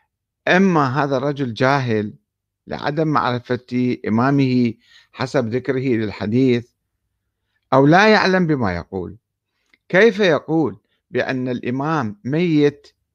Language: Arabic